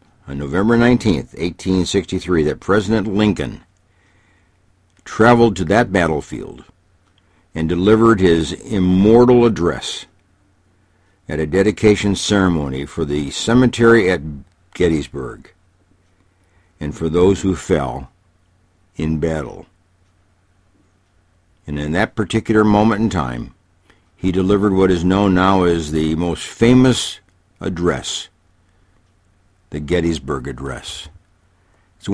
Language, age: English, 60-79